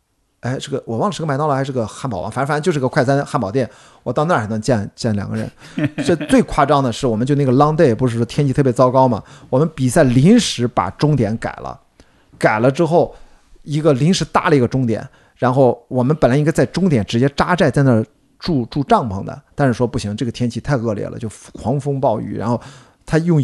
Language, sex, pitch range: Chinese, male, 115-145 Hz